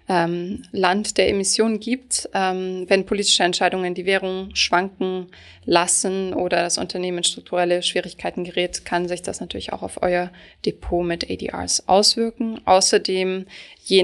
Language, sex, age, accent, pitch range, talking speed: German, female, 20-39, German, 180-210 Hz, 130 wpm